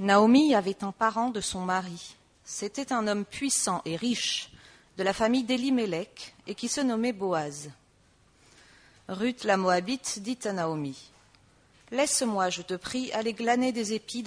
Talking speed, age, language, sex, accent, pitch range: 150 wpm, 40-59, English, female, French, 170-225 Hz